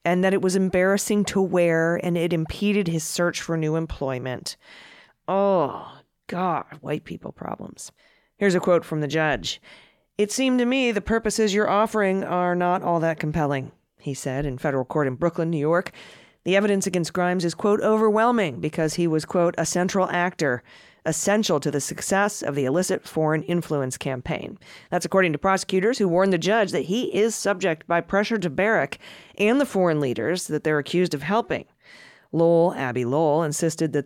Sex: female